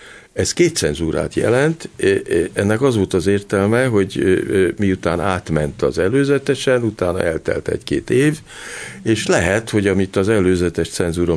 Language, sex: Hungarian, male